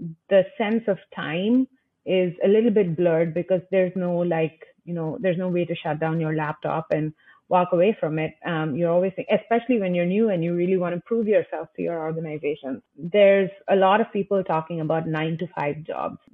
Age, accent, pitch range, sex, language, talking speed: 30-49, Indian, 165-200 Hz, female, English, 205 wpm